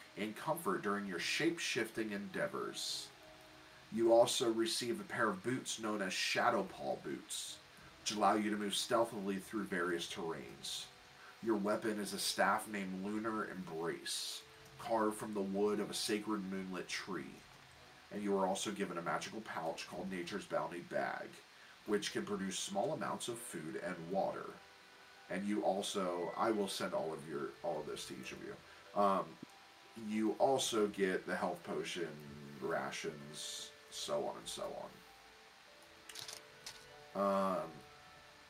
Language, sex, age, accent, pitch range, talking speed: English, male, 40-59, American, 95-115 Hz, 145 wpm